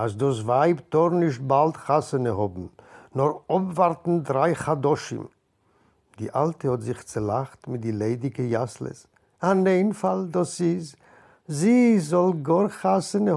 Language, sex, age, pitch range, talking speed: French, male, 50-69, 125-160 Hz, 130 wpm